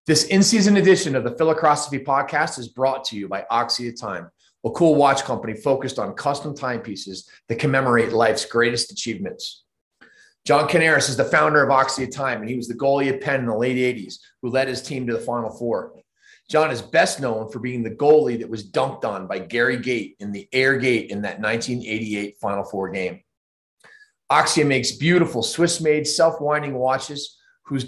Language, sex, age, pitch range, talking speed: English, male, 30-49, 115-140 Hz, 190 wpm